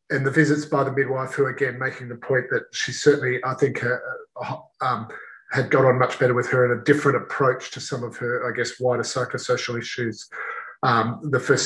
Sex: male